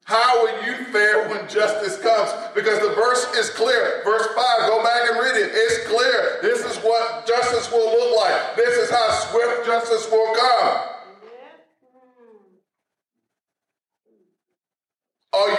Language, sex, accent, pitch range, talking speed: English, male, American, 210-255 Hz, 140 wpm